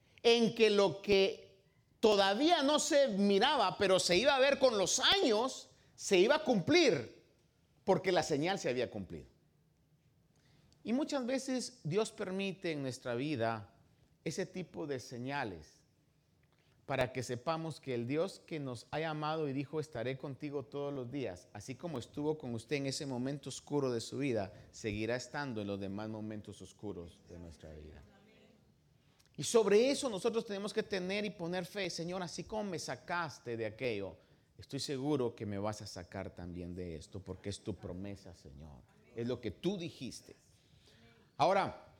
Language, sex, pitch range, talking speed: Spanish, male, 120-190 Hz, 165 wpm